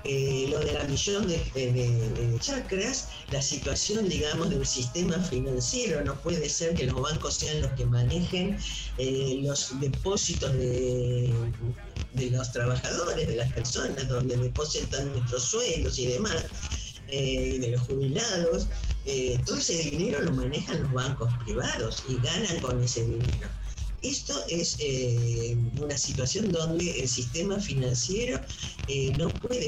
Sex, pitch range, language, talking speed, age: female, 120-145 Hz, Spanish, 145 wpm, 50-69